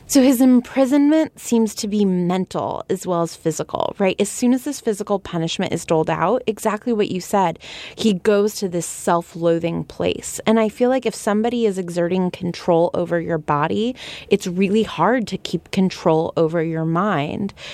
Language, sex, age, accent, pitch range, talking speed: English, female, 20-39, American, 170-230 Hz, 175 wpm